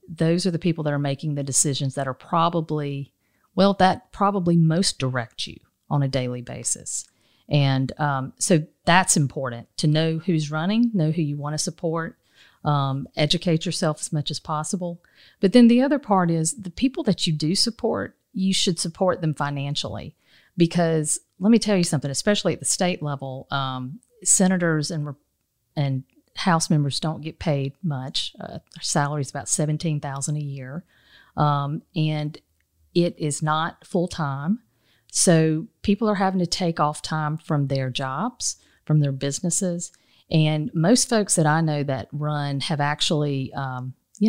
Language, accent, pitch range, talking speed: English, American, 140-175 Hz, 165 wpm